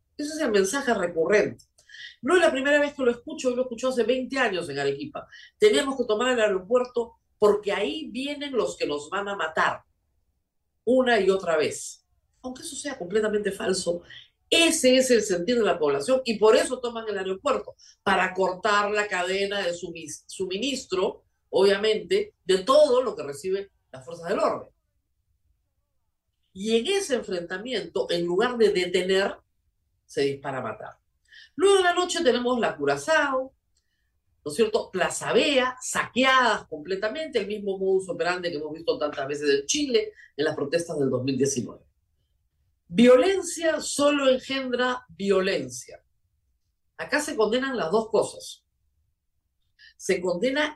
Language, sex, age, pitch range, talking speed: Spanish, female, 50-69, 155-255 Hz, 150 wpm